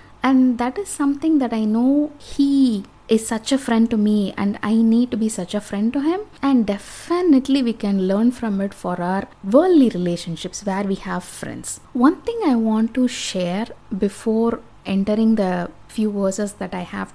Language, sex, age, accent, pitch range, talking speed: English, female, 20-39, Indian, 195-255 Hz, 185 wpm